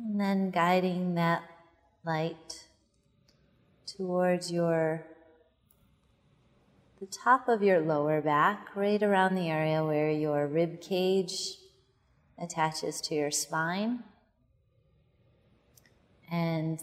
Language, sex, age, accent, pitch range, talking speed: English, female, 30-49, American, 150-185 Hz, 95 wpm